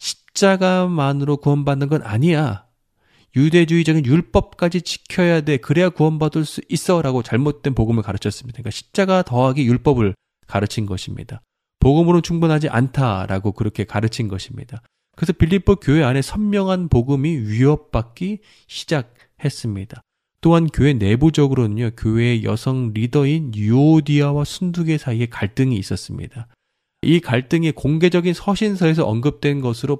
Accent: native